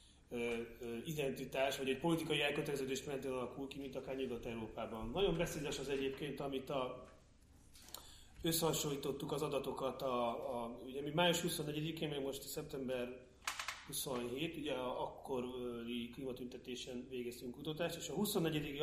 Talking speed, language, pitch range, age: 125 wpm, Hungarian, 125-150 Hz, 30-49